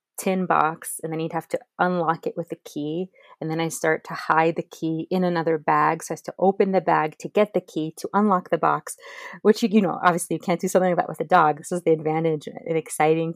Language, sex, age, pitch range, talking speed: English, female, 30-49, 160-185 Hz, 260 wpm